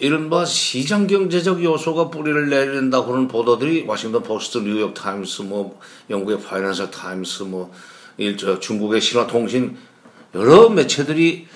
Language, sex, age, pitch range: Korean, male, 60-79, 105-155 Hz